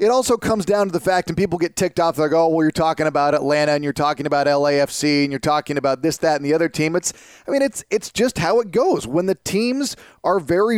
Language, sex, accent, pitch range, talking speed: English, male, American, 155-195 Hz, 275 wpm